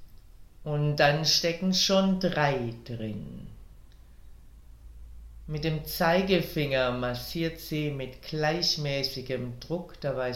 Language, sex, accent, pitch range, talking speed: German, female, German, 115-165 Hz, 85 wpm